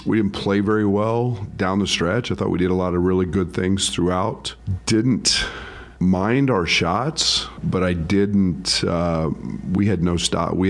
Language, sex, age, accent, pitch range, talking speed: English, male, 50-69, American, 85-95 Hz, 180 wpm